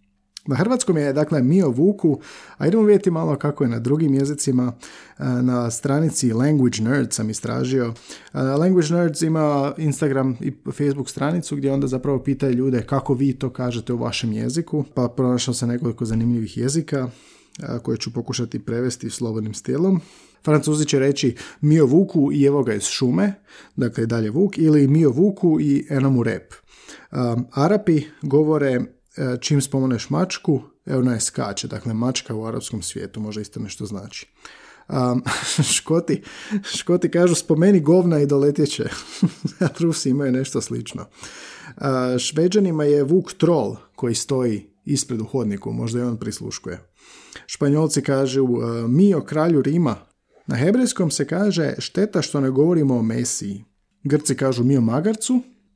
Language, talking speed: Croatian, 145 wpm